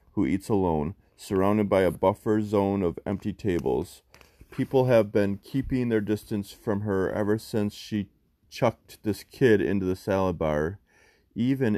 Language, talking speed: English, 155 wpm